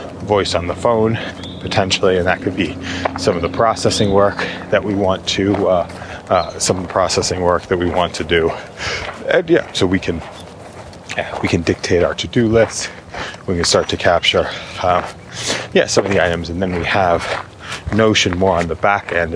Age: 30-49